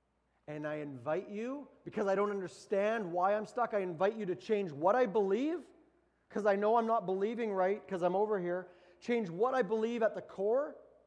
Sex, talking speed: male, 200 wpm